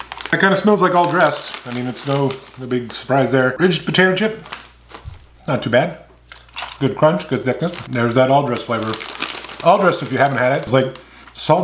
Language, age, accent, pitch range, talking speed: English, 30-49, American, 120-165 Hz, 205 wpm